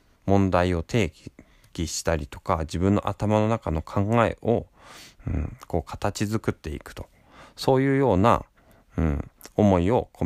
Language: Japanese